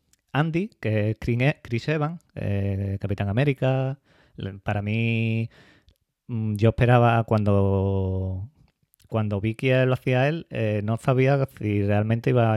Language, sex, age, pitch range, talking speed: Spanish, male, 30-49, 105-130 Hz, 120 wpm